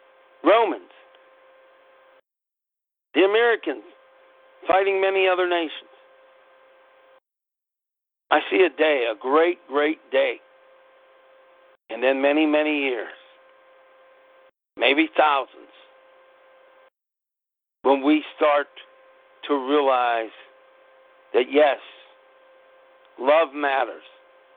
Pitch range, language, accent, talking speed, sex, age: 130-175 Hz, English, American, 75 wpm, male, 60-79